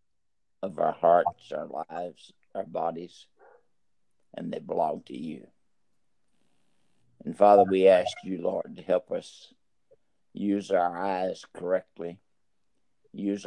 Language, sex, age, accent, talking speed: English, male, 60-79, American, 115 wpm